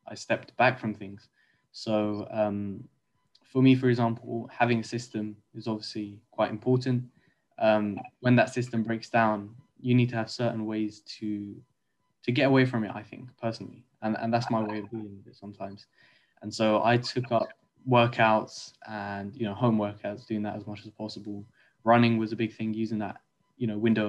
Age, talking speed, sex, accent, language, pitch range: 10-29, 185 wpm, male, British, English, 105-120 Hz